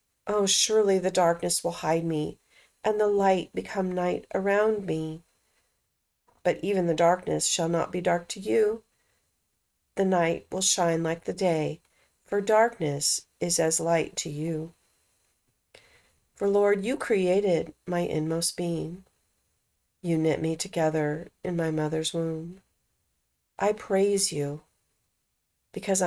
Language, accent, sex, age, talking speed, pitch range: English, American, female, 40-59, 130 wpm, 165-200 Hz